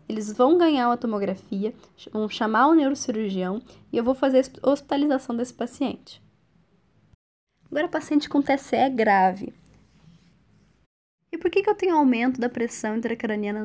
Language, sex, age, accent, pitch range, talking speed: Portuguese, female, 10-29, Brazilian, 205-270 Hz, 140 wpm